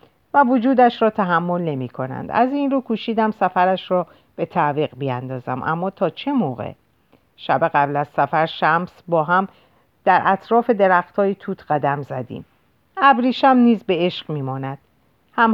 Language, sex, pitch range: Persian, female, 155-230 Hz